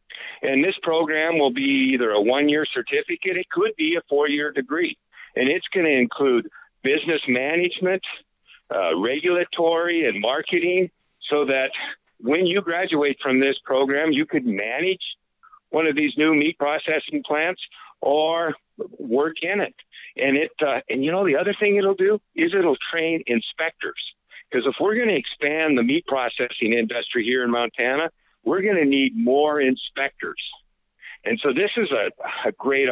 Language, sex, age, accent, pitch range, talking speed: English, male, 50-69, American, 135-185 Hz, 160 wpm